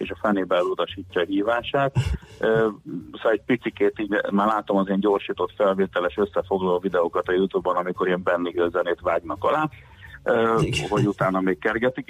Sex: male